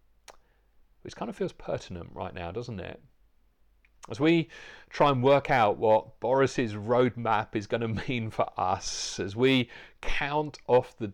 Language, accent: English, British